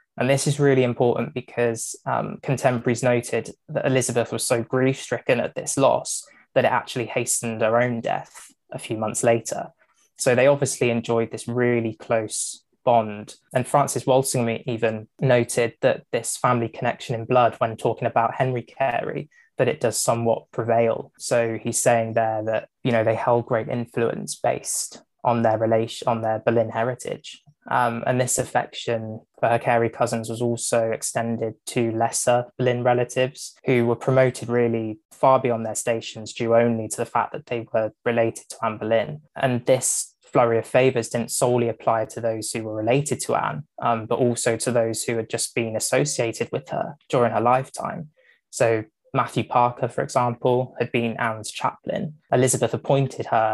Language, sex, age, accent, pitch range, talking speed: English, male, 20-39, British, 115-125 Hz, 170 wpm